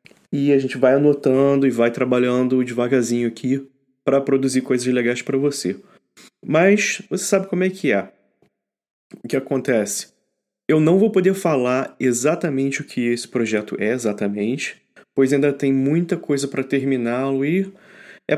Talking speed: 155 wpm